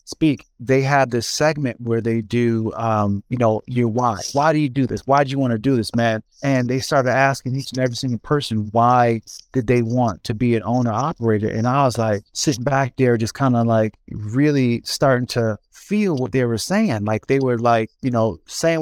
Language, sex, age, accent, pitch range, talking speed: English, male, 30-49, American, 120-140 Hz, 225 wpm